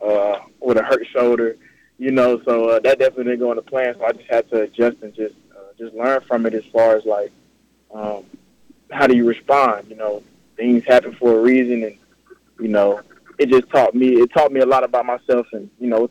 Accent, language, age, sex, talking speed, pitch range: American, English, 20-39, male, 230 wpm, 115-130 Hz